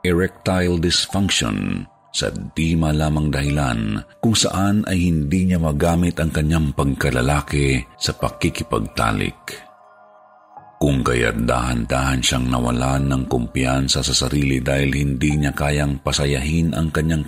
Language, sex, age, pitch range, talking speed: Filipino, male, 50-69, 70-85 Hz, 115 wpm